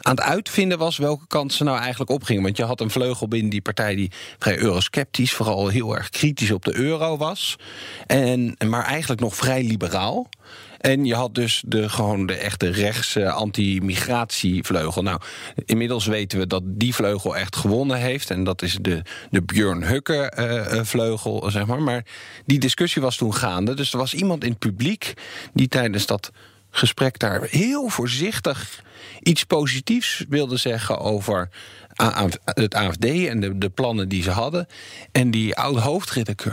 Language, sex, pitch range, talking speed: English, male, 105-135 Hz, 170 wpm